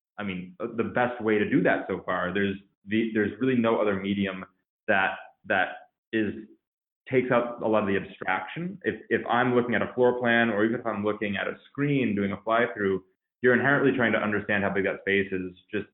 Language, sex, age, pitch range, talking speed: English, male, 20-39, 95-115 Hz, 220 wpm